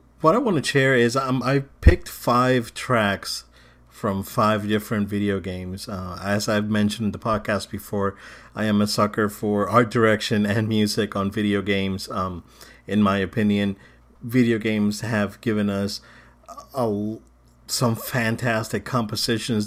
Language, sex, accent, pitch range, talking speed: English, male, American, 100-115 Hz, 145 wpm